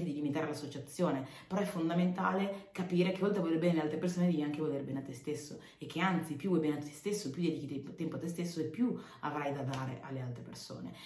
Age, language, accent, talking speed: 30-49, Italian, native, 250 wpm